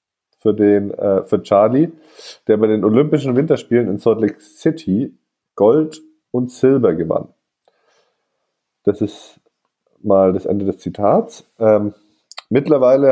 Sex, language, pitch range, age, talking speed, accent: male, German, 100-125 Hz, 20-39, 125 wpm, German